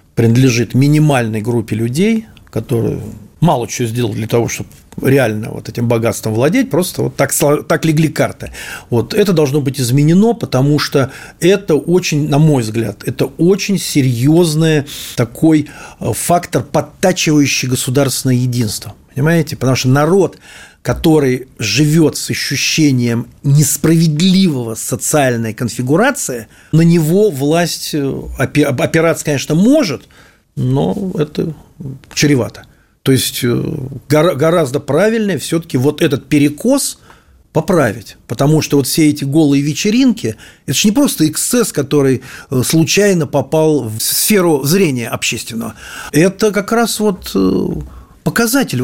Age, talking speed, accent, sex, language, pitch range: 40-59, 120 wpm, native, male, Russian, 125-165 Hz